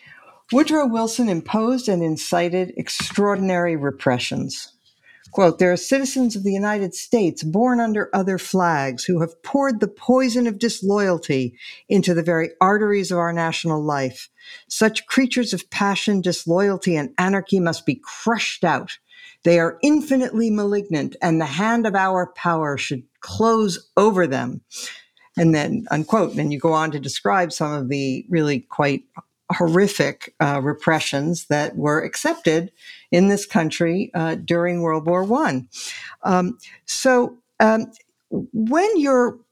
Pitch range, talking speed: 160-225 Hz, 140 wpm